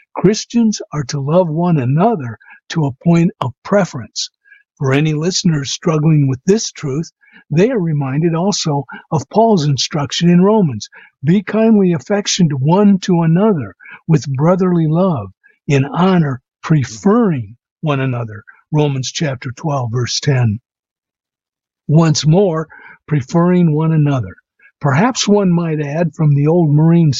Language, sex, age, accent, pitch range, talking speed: English, male, 60-79, American, 140-190 Hz, 130 wpm